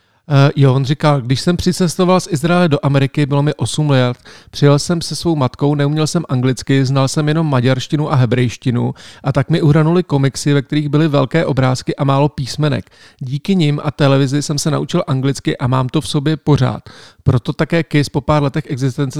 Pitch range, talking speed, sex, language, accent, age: 135-155 Hz, 195 wpm, male, Czech, native, 40-59